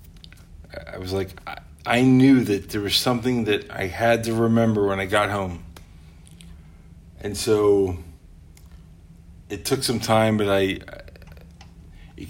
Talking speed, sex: 140 wpm, male